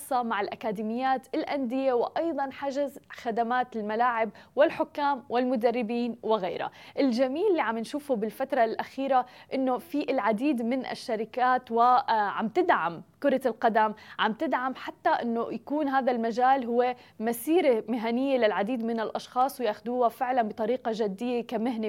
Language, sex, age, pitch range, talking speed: Arabic, female, 20-39, 220-265 Hz, 120 wpm